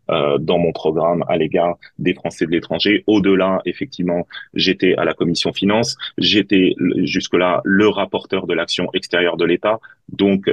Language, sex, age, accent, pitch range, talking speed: French, male, 30-49, French, 90-100 Hz, 150 wpm